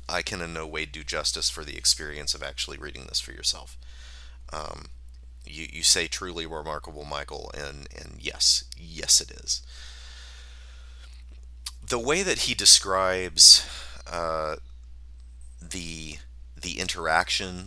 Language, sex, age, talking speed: English, male, 30-49, 130 wpm